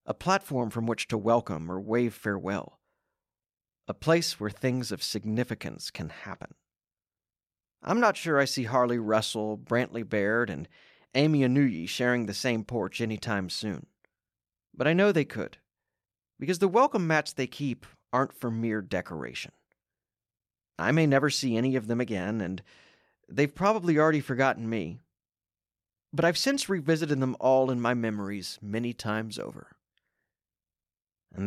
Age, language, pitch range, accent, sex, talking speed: 40-59, English, 105-145 Hz, American, male, 145 wpm